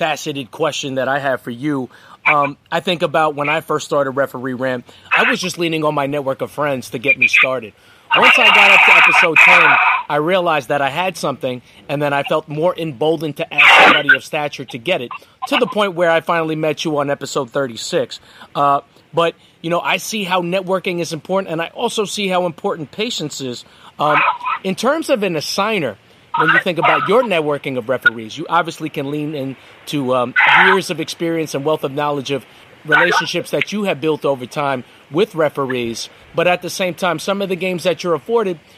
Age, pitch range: 30-49, 140-180 Hz